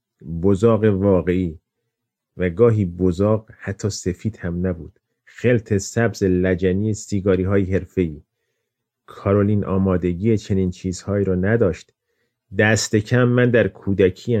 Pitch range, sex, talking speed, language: 95-115 Hz, male, 110 wpm, Persian